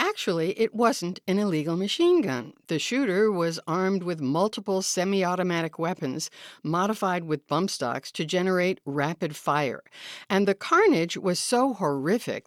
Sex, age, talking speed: female, 60-79, 140 wpm